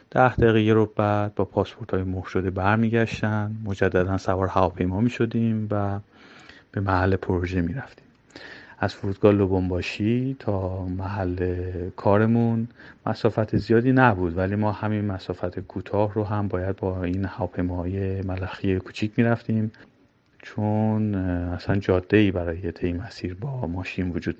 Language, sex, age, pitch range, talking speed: Persian, male, 30-49, 95-110 Hz, 130 wpm